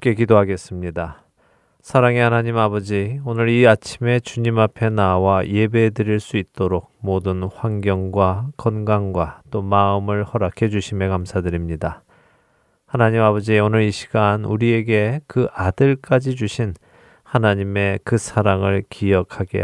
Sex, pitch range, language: male, 95-120 Hz, Korean